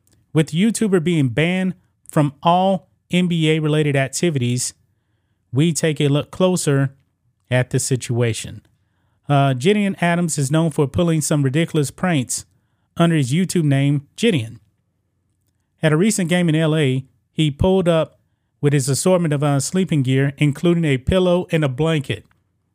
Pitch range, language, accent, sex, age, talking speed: 115-160 Hz, English, American, male, 30-49, 140 wpm